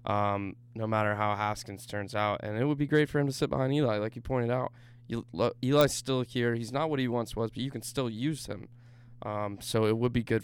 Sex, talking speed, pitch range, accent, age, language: male, 245 wpm, 110-120 Hz, American, 20-39, English